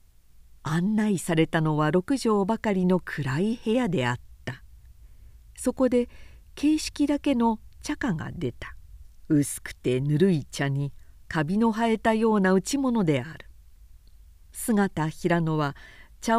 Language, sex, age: Japanese, female, 50-69